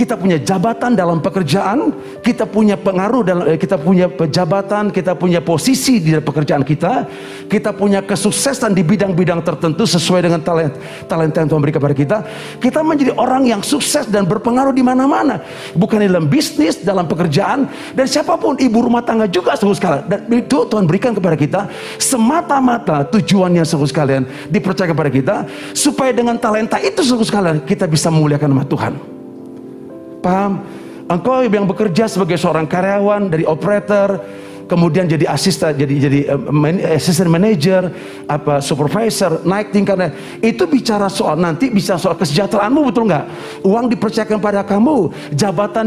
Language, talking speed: Indonesian, 150 wpm